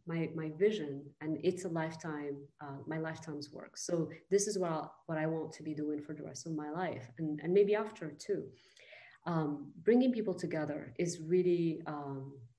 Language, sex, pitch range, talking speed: English, female, 155-185 Hz, 190 wpm